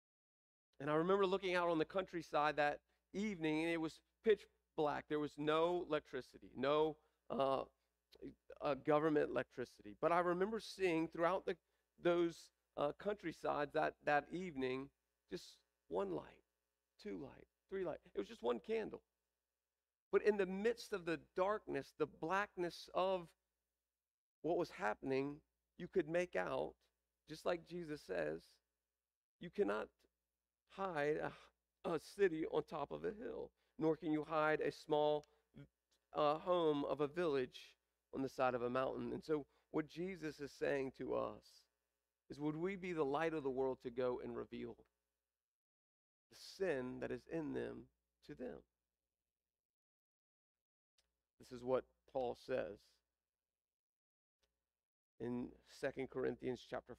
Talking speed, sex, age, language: 140 wpm, male, 40-59, English